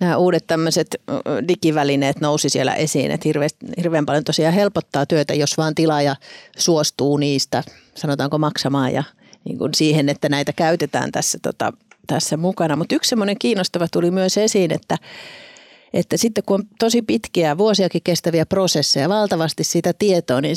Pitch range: 145-185 Hz